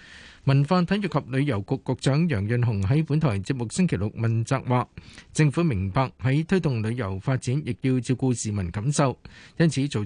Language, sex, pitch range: Chinese, male, 115-145 Hz